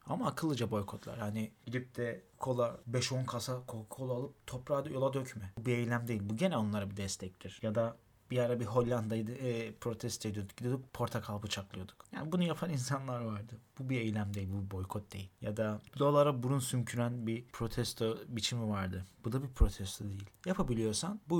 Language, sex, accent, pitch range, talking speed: Turkish, male, native, 110-135 Hz, 180 wpm